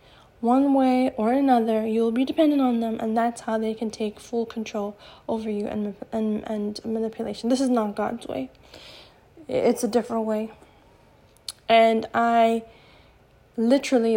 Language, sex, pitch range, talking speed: English, female, 215-240 Hz, 150 wpm